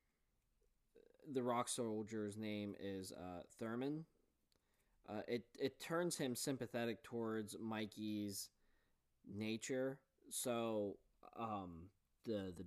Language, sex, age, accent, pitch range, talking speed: English, male, 20-39, American, 105-125 Hz, 95 wpm